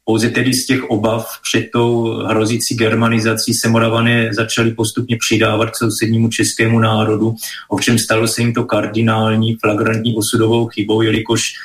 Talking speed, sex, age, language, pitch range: 140 wpm, male, 20-39, Slovak, 110-115 Hz